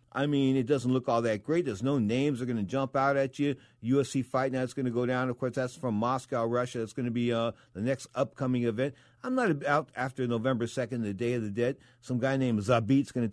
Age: 50-69